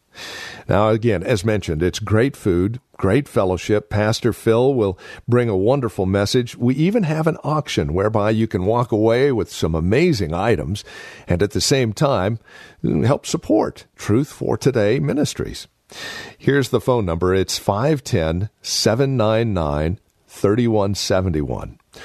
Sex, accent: male, American